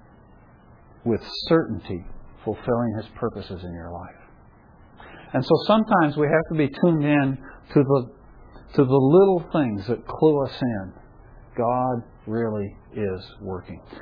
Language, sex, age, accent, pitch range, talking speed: English, male, 50-69, American, 120-150 Hz, 135 wpm